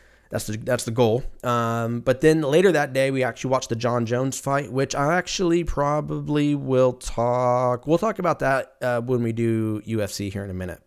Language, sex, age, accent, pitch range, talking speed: English, male, 20-39, American, 110-140 Hz, 205 wpm